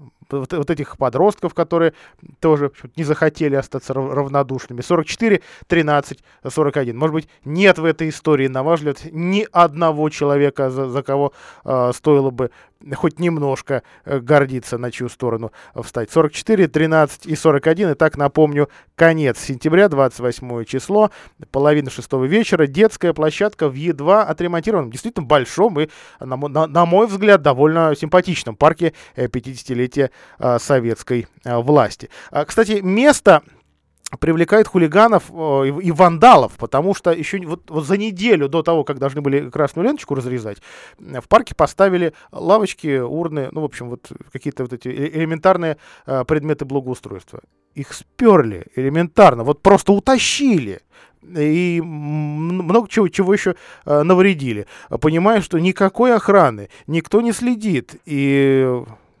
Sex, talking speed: male, 130 wpm